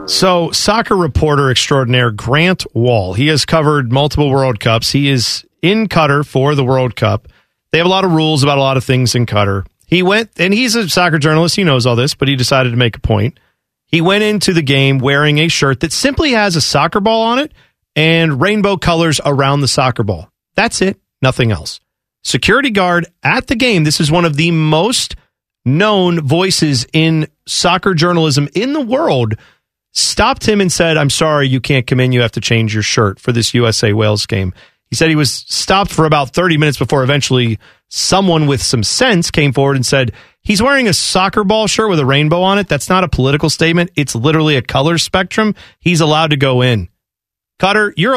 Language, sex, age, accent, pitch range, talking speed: English, male, 40-59, American, 130-180 Hz, 205 wpm